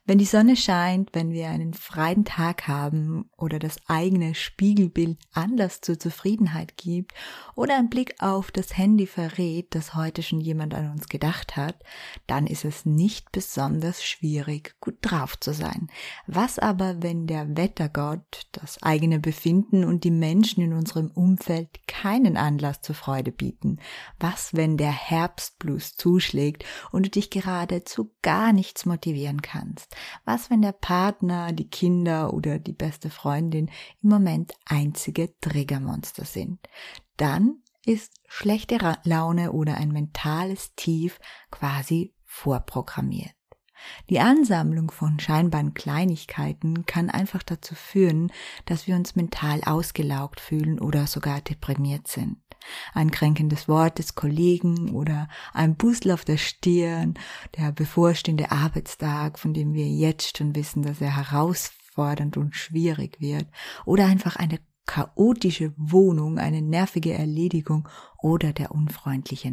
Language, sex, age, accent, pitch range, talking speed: German, female, 20-39, German, 150-180 Hz, 135 wpm